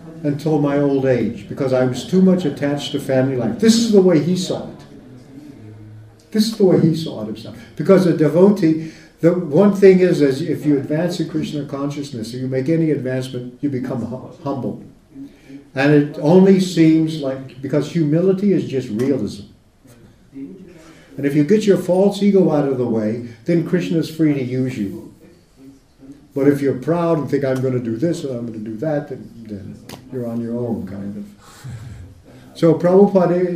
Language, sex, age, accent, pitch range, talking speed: English, male, 60-79, American, 130-165 Hz, 190 wpm